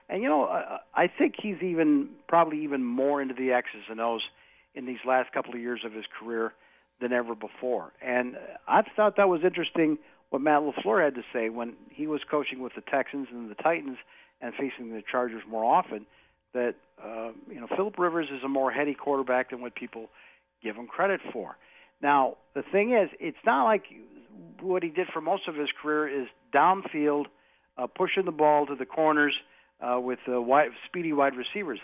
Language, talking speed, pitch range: English, 200 wpm, 125-175 Hz